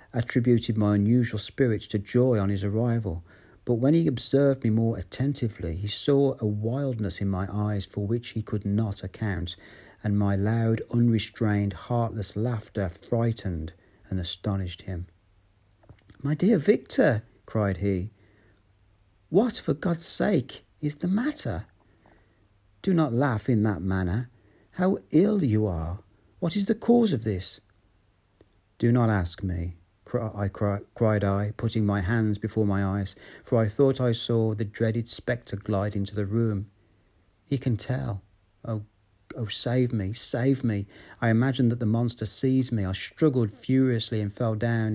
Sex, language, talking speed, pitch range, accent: male, English, 155 wpm, 100-120 Hz, British